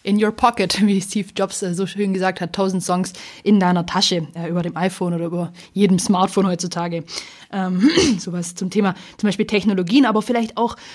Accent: German